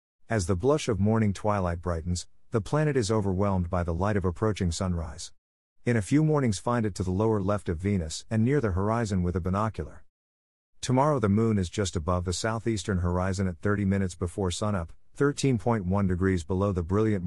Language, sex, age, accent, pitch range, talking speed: English, male, 50-69, American, 85-110 Hz, 190 wpm